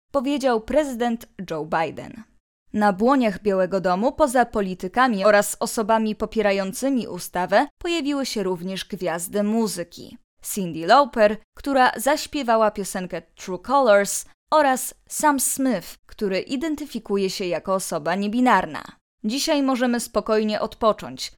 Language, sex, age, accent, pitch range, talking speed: Polish, female, 20-39, native, 190-260 Hz, 110 wpm